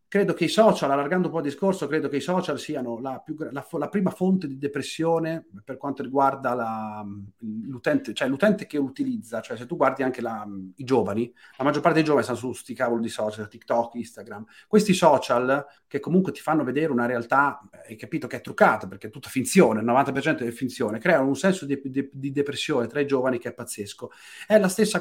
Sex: male